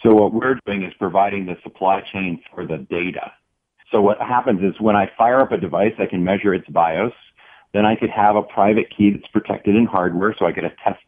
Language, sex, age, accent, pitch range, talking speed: English, male, 40-59, American, 95-115 Hz, 225 wpm